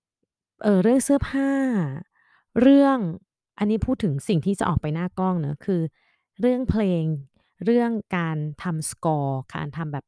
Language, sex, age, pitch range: Thai, female, 20-39, 145-195 Hz